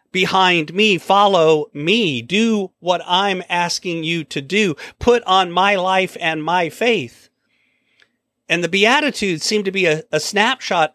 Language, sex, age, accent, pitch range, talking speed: English, male, 40-59, American, 175-220 Hz, 150 wpm